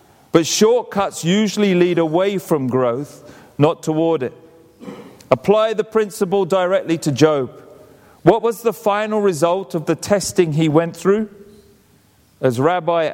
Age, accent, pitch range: 40-59, British, 135-195 Hz